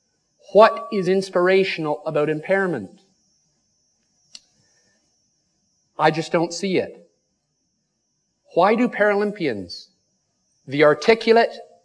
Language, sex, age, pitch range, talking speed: English, male, 50-69, 170-215 Hz, 75 wpm